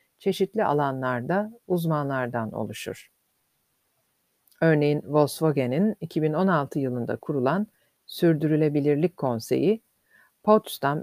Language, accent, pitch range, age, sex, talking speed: Turkish, native, 145-190 Hz, 50-69, female, 65 wpm